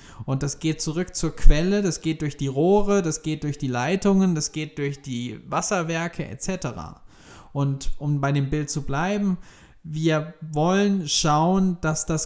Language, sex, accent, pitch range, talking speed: German, male, German, 135-170 Hz, 165 wpm